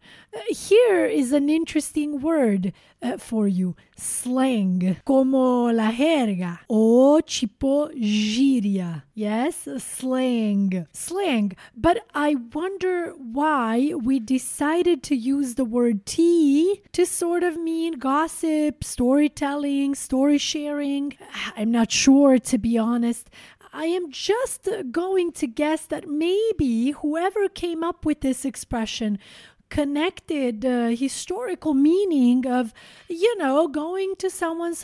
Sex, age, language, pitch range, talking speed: female, 30-49, English, 235-320 Hz, 115 wpm